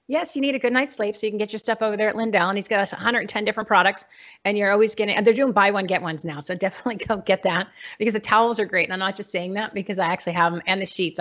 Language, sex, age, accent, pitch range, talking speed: English, female, 40-59, American, 200-250 Hz, 320 wpm